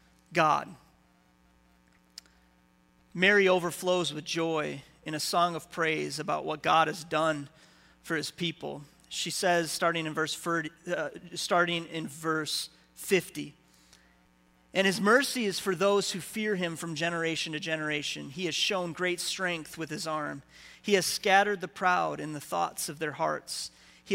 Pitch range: 150-180 Hz